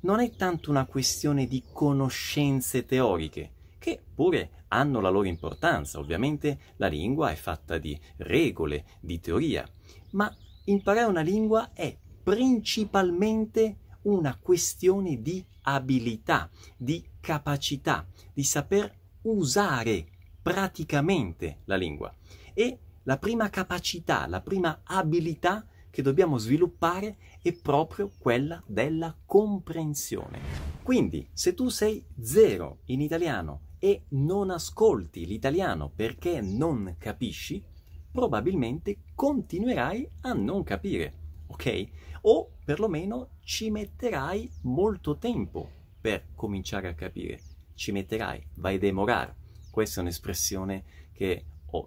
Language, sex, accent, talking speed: Italian, male, native, 110 wpm